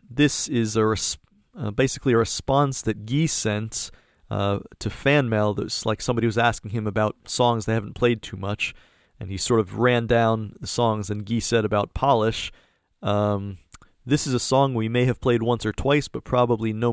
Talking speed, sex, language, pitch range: 200 wpm, male, English, 110-130 Hz